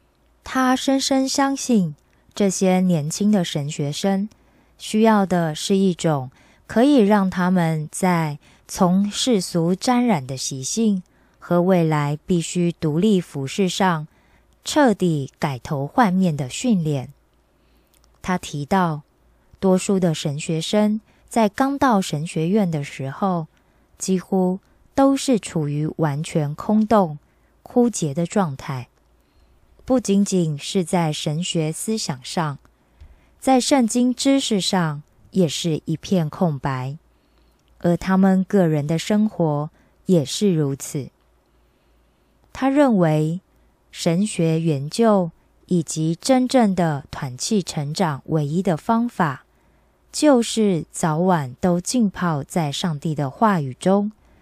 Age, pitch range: 20-39, 145-200 Hz